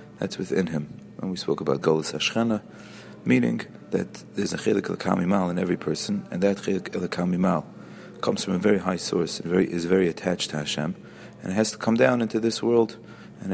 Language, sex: English, male